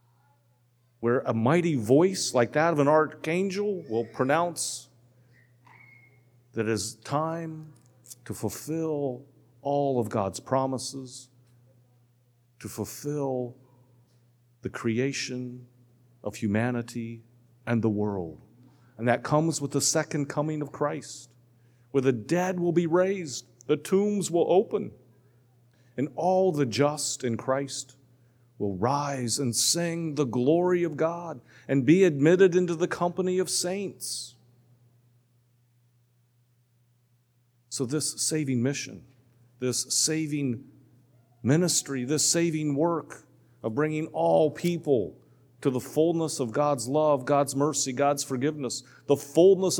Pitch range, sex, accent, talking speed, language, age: 120-160 Hz, male, American, 115 wpm, English, 40-59